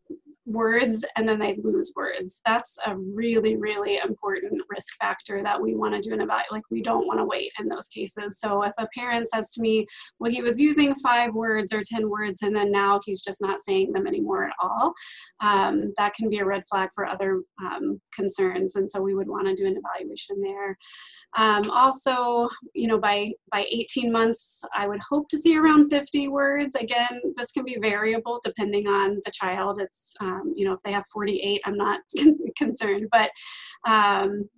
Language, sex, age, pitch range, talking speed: English, female, 20-39, 200-240 Hz, 200 wpm